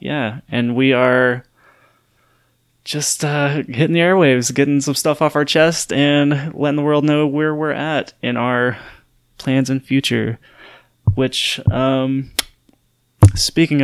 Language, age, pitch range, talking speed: English, 20-39, 120-145 Hz, 135 wpm